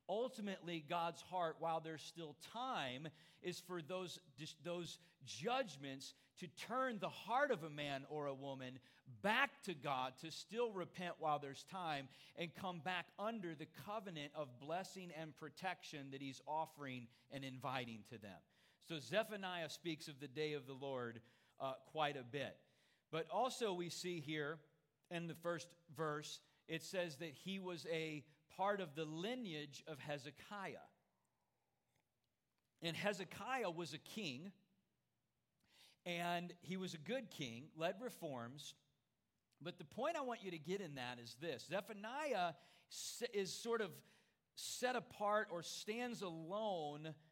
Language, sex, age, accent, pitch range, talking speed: English, male, 40-59, American, 145-185 Hz, 145 wpm